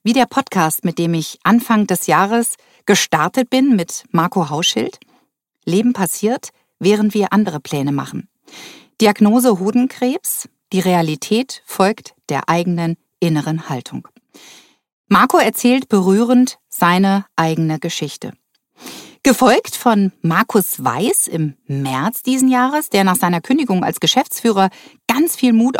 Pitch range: 170-245 Hz